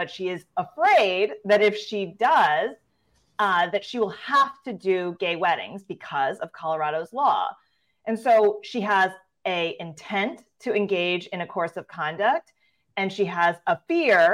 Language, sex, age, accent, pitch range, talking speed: English, female, 30-49, American, 175-215 Hz, 165 wpm